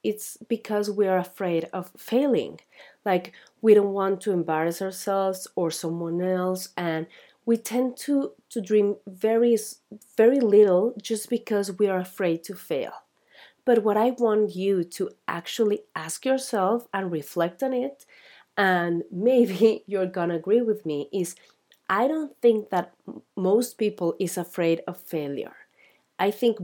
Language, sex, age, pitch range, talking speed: English, female, 30-49, 180-225 Hz, 150 wpm